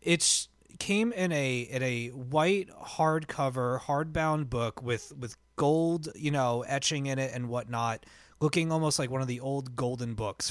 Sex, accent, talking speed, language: male, American, 165 wpm, English